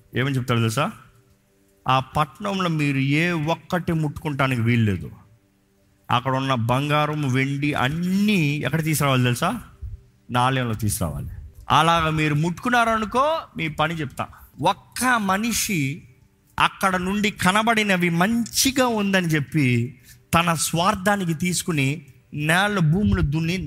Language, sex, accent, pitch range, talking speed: Telugu, male, native, 110-180 Hz, 105 wpm